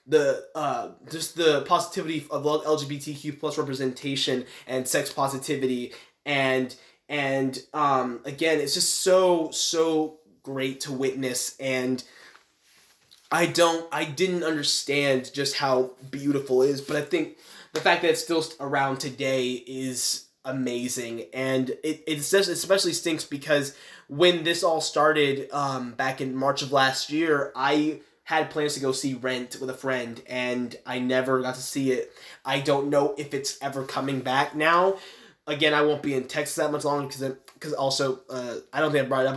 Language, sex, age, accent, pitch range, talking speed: English, male, 20-39, American, 125-150 Hz, 165 wpm